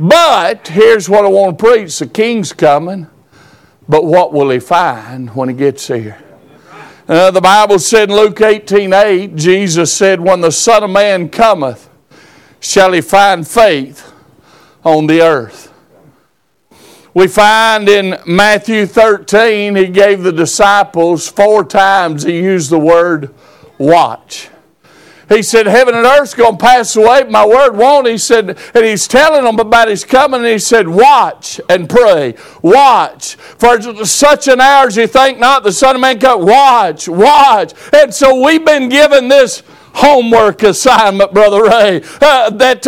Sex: male